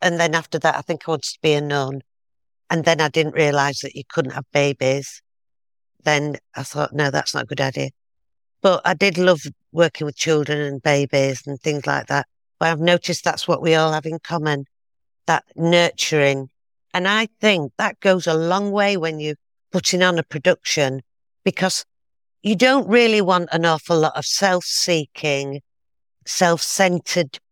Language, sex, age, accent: English, female, 50-69, British